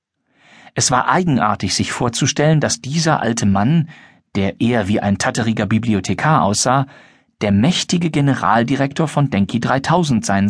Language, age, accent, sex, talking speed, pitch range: German, 40-59, German, male, 130 wpm, 105-145 Hz